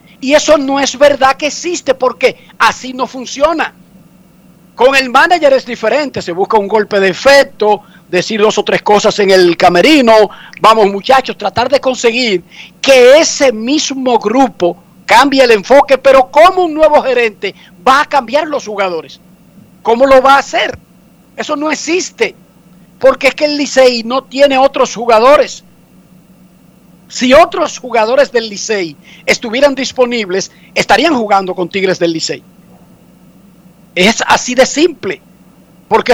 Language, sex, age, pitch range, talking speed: Spanish, male, 50-69, 190-270 Hz, 145 wpm